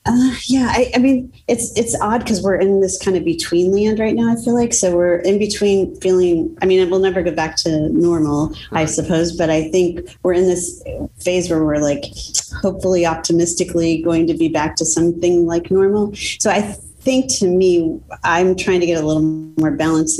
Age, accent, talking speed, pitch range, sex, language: 30-49, American, 210 wpm, 155-185 Hz, female, English